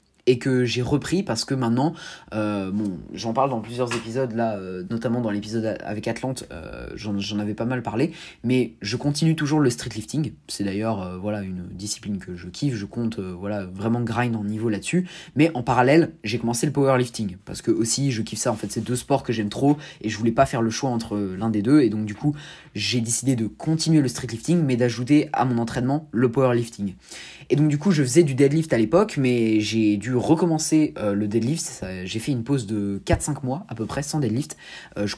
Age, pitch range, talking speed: 20-39, 110-150 Hz, 225 wpm